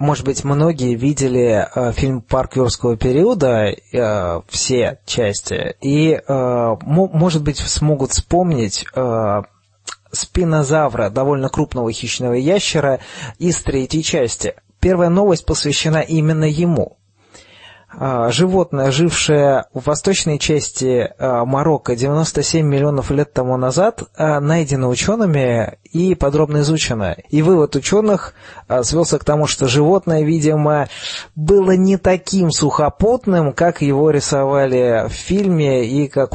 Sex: male